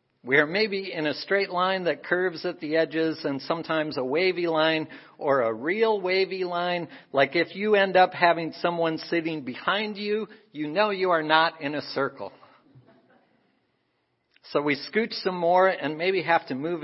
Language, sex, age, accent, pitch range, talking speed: English, male, 50-69, American, 130-175 Hz, 180 wpm